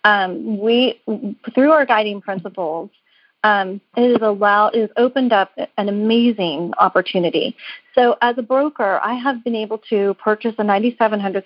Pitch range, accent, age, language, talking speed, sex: 190-230 Hz, American, 40-59, English, 150 wpm, female